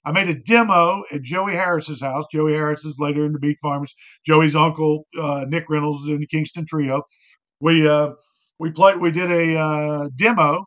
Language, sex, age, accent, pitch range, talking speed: English, male, 50-69, American, 150-245 Hz, 195 wpm